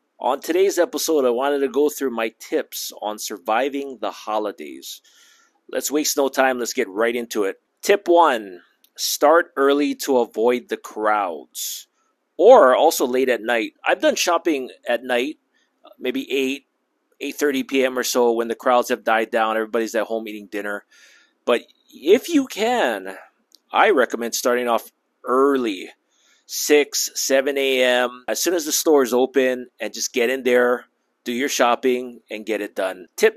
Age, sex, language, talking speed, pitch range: 30-49, male, English, 160 wpm, 115-170 Hz